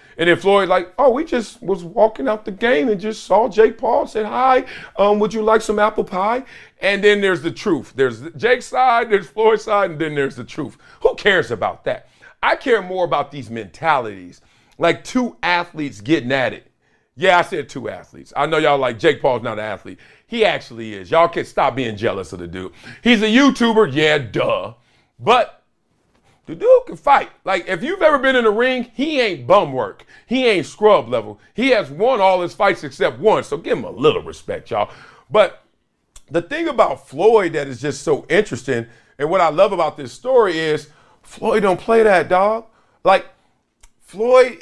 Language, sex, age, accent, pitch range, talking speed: English, male, 40-59, American, 160-235 Hz, 200 wpm